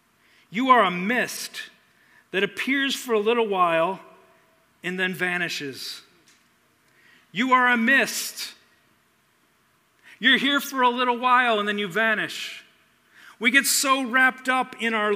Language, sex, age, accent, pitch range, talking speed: English, male, 50-69, American, 210-260 Hz, 135 wpm